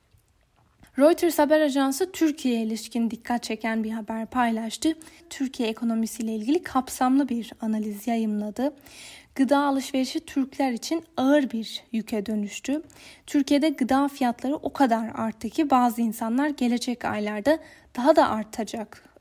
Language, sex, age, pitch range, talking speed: Turkish, female, 10-29, 225-280 Hz, 120 wpm